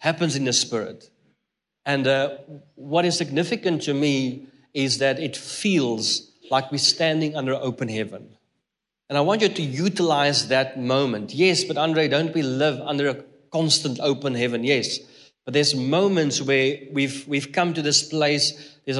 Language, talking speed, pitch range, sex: English, 165 wpm, 130-155 Hz, male